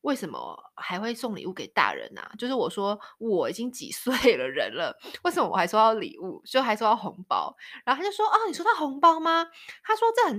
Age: 20-39